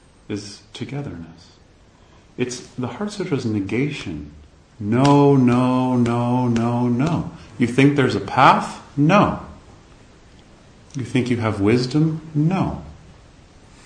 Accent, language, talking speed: American, English, 105 wpm